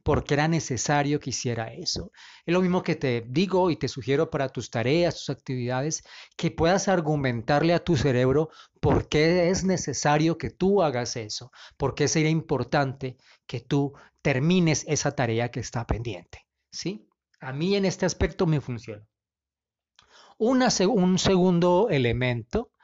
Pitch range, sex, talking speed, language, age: 130-165 Hz, male, 140 wpm, Spanish, 40-59